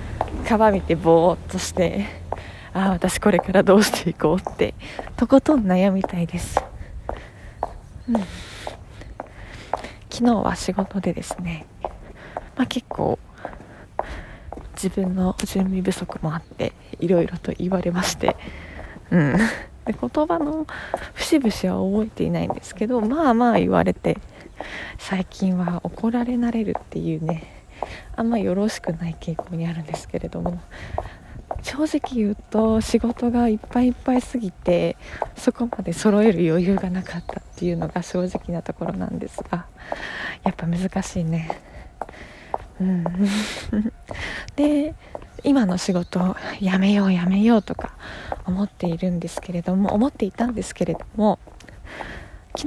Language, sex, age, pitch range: Japanese, female, 20-39, 180-235 Hz